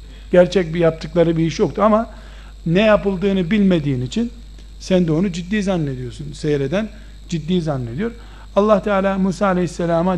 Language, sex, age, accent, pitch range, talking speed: Turkish, male, 60-79, native, 155-200 Hz, 135 wpm